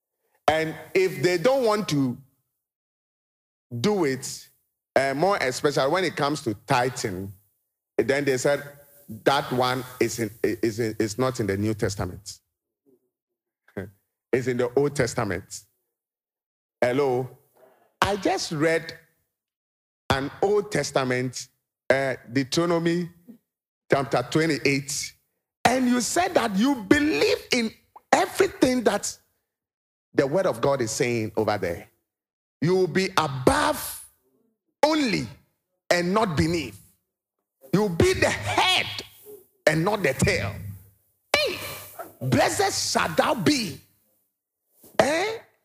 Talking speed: 115 wpm